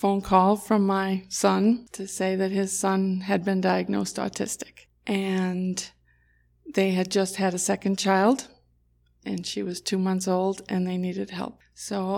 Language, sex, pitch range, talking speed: English, female, 185-205 Hz, 165 wpm